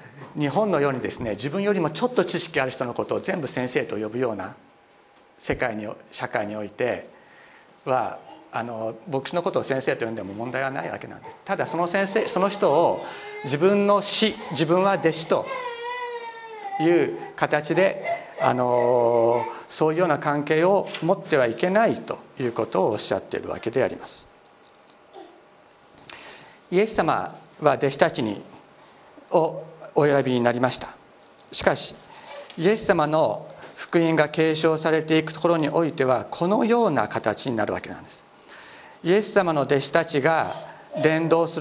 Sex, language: male, Japanese